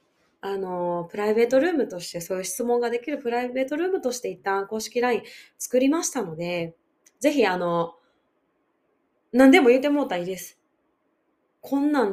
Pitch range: 190-275 Hz